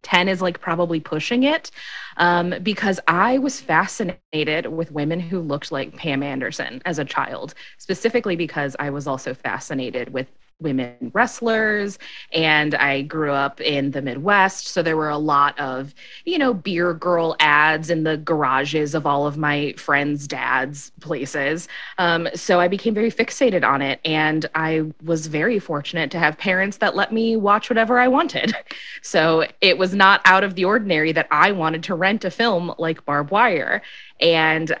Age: 20-39